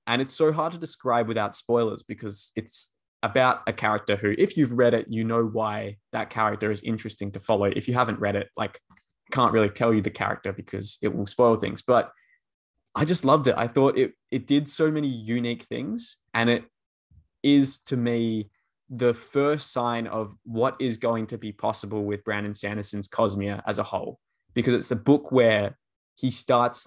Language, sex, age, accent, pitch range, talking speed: English, male, 20-39, Australian, 100-125 Hz, 195 wpm